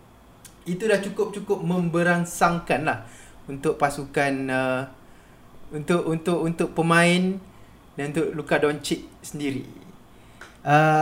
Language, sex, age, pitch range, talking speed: Malay, male, 20-39, 150-195 Hz, 95 wpm